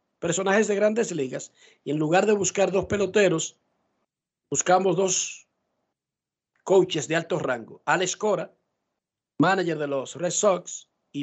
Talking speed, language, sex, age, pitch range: 135 wpm, Spanish, male, 50-69, 155-195 Hz